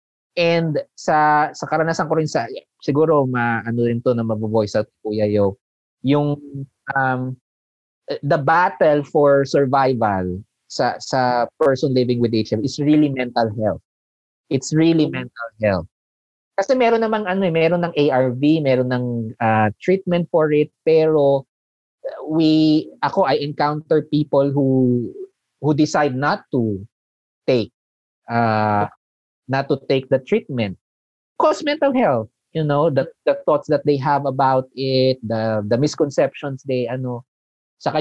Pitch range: 115-150 Hz